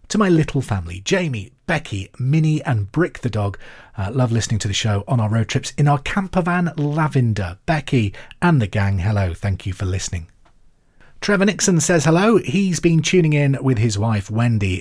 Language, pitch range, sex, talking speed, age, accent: English, 110-160 Hz, male, 185 wpm, 40-59, British